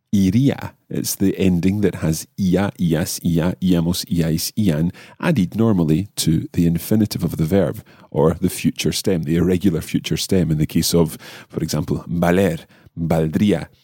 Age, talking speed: 40-59, 155 wpm